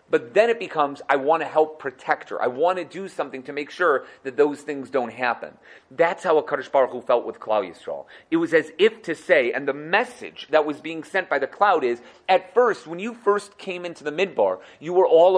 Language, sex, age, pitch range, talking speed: English, male, 30-49, 135-190 Hz, 240 wpm